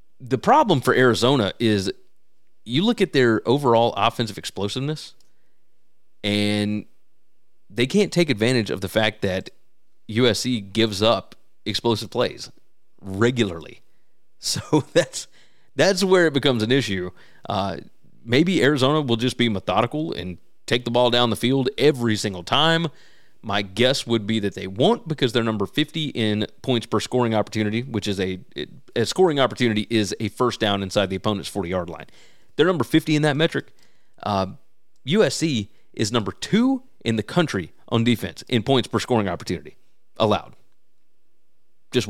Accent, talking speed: American, 150 wpm